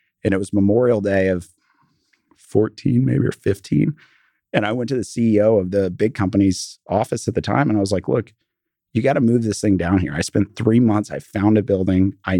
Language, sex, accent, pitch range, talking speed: English, male, American, 95-115 Hz, 225 wpm